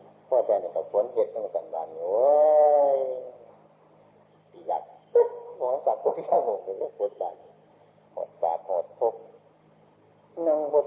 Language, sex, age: Thai, male, 50-69